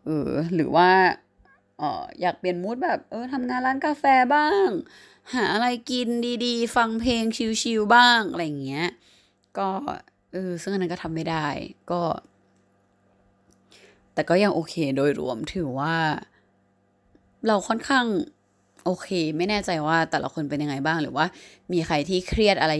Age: 20-39